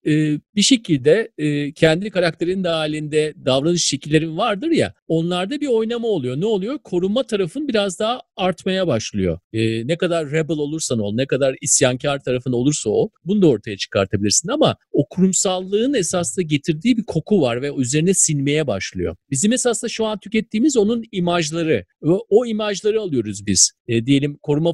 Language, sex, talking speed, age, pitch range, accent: Turkish, male, 150 wpm, 50-69, 140-205 Hz, native